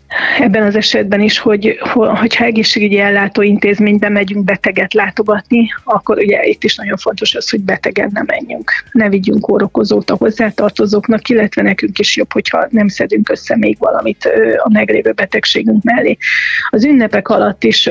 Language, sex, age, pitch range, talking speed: Hungarian, female, 30-49, 205-235 Hz, 155 wpm